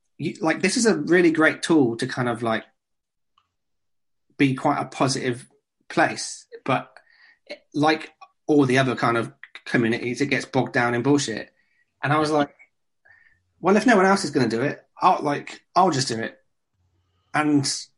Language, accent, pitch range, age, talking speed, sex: English, British, 125-150 Hz, 30-49, 170 wpm, male